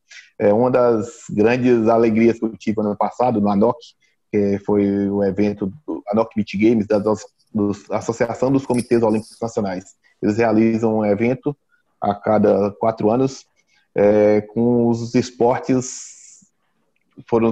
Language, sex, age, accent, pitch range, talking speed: Portuguese, male, 20-39, Brazilian, 115-135 Hz, 135 wpm